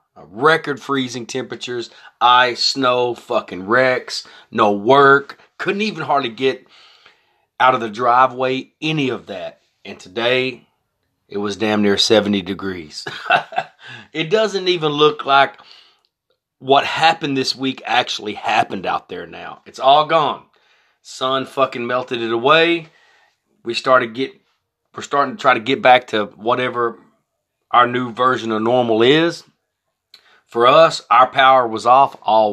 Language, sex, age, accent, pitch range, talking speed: English, male, 30-49, American, 110-140 Hz, 140 wpm